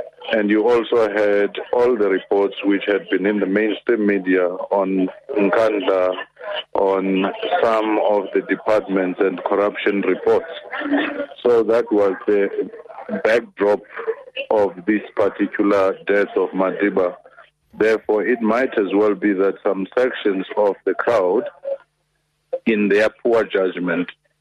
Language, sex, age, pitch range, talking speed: English, male, 50-69, 95-110 Hz, 125 wpm